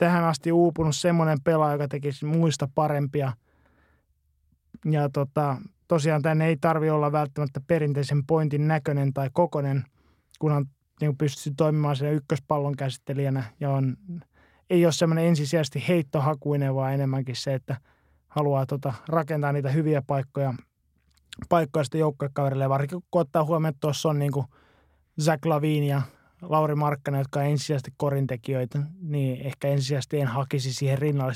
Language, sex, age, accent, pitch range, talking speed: Finnish, male, 20-39, native, 135-155 Hz, 135 wpm